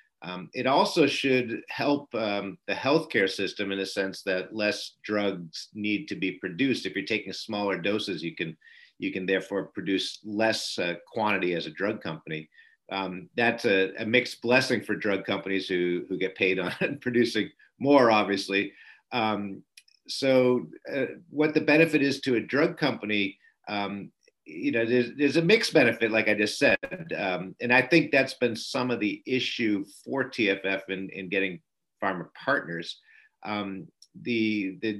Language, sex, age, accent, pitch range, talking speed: English, male, 50-69, American, 95-125 Hz, 165 wpm